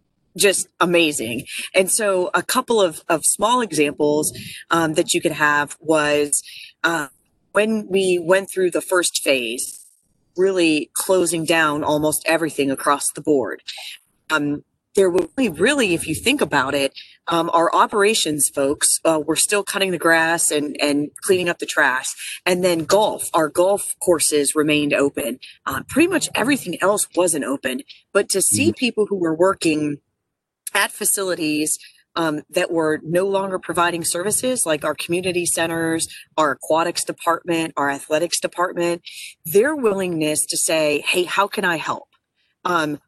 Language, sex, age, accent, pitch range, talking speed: English, female, 30-49, American, 155-195 Hz, 150 wpm